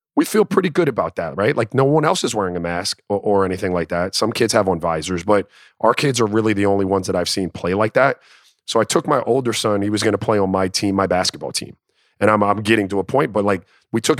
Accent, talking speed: American, 285 wpm